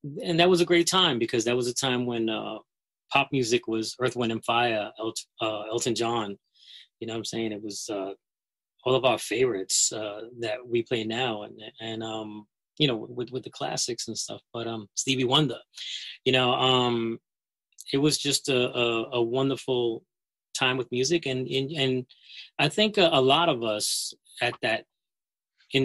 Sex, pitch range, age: male, 115-135 Hz, 30-49